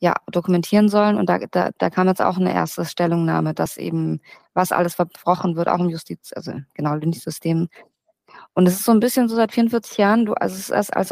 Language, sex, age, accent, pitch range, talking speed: German, female, 20-39, German, 175-215 Hz, 220 wpm